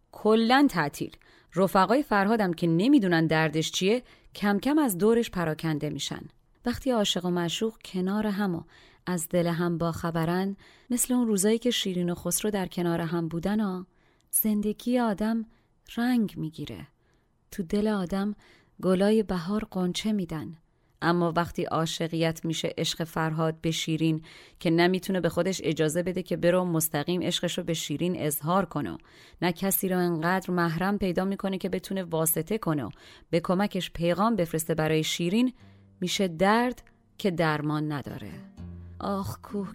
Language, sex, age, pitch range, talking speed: Persian, female, 30-49, 160-200 Hz, 140 wpm